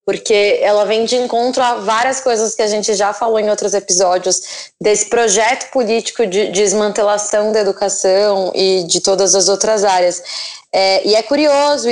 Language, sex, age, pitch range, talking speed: Portuguese, female, 10-29, 215-275 Hz, 160 wpm